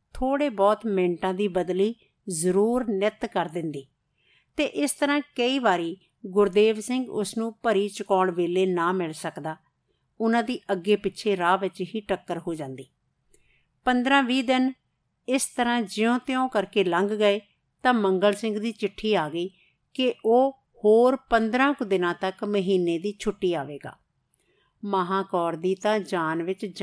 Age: 50-69